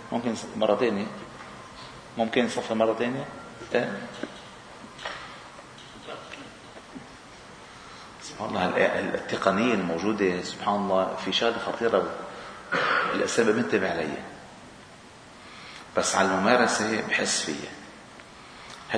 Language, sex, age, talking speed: Arabic, male, 40-59, 75 wpm